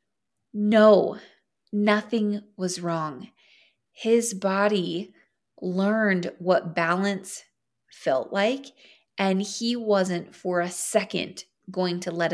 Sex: female